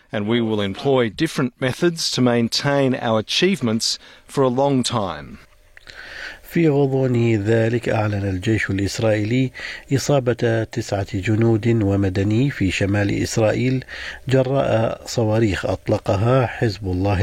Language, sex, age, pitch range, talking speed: Arabic, male, 50-69, 100-120 Hz, 110 wpm